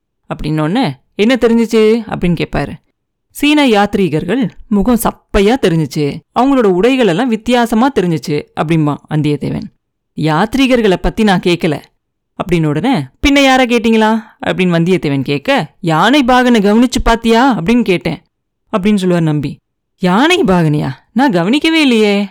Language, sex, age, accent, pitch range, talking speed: Tamil, female, 30-49, native, 170-240 Hz, 115 wpm